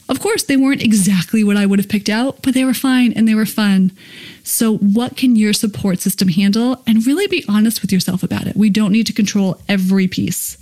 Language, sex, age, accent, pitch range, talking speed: English, female, 30-49, American, 195-245 Hz, 230 wpm